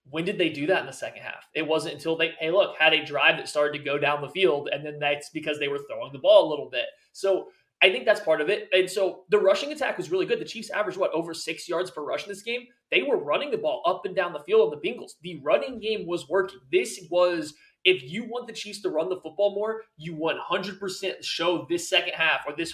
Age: 20-39